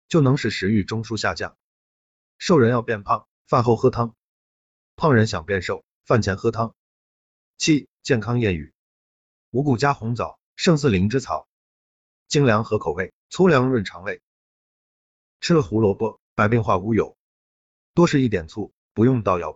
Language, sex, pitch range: Chinese, male, 95-130 Hz